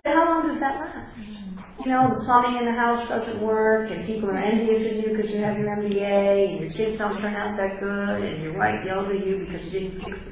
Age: 50-69